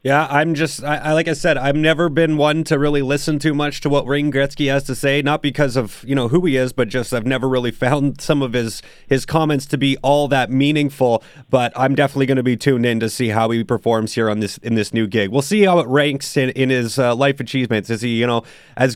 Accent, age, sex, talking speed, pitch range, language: American, 30-49, male, 265 wpm, 120-150 Hz, English